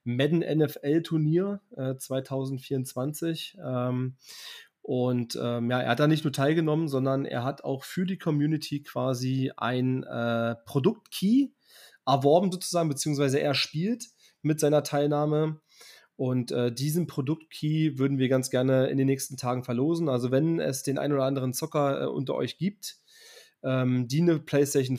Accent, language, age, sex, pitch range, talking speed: German, German, 30-49, male, 125-155 Hz, 150 wpm